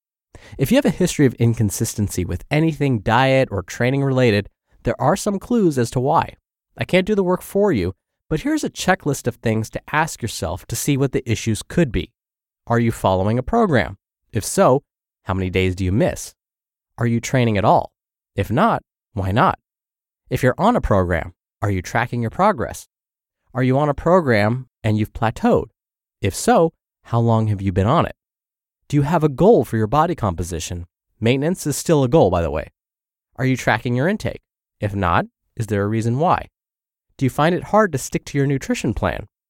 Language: English